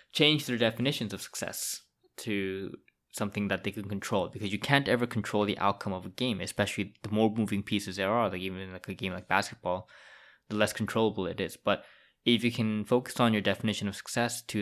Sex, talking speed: male, 210 wpm